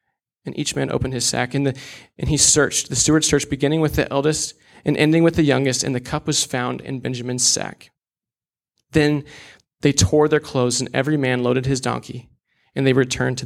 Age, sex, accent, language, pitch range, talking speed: 20-39, male, American, English, 135-165 Hz, 205 wpm